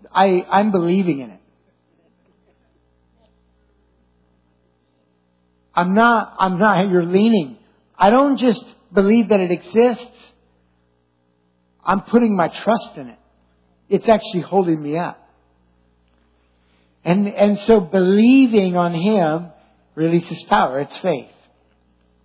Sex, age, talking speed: male, 60-79, 105 wpm